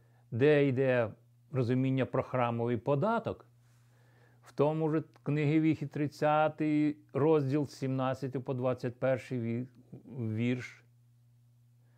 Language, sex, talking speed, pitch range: Ukrainian, male, 85 wpm, 120-135 Hz